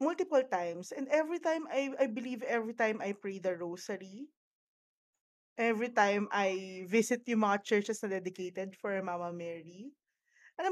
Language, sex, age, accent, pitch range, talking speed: Filipino, female, 20-39, native, 195-260 Hz, 150 wpm